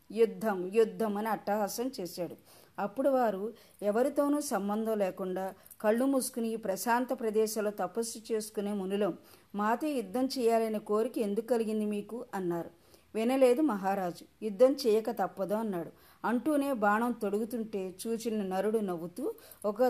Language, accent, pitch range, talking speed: Telugu, native, 195-245 Hz, 115 wpm